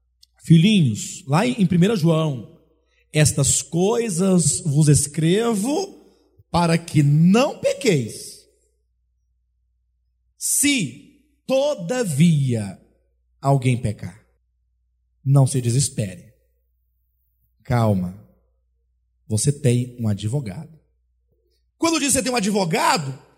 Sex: male